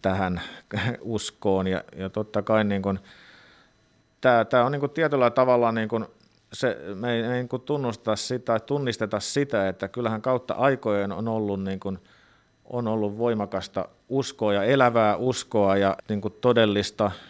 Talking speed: 140 wpm